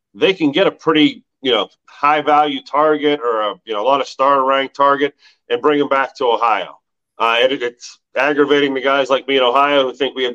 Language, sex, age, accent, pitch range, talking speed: English, male, 40-59, American, 130-160 Hz, 220 wpm